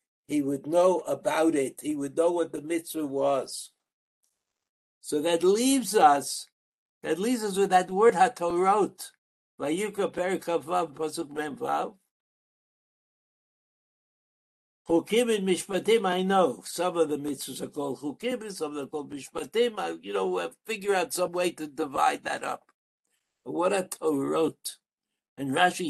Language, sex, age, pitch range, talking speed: English, male, 60-79, 140-195 Hz, 130 wpm